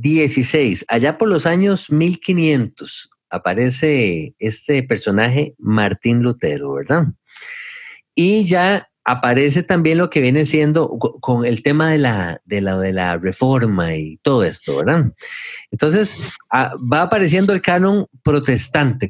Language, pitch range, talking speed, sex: Spanish, 115-175 Hz, 125 wpm, male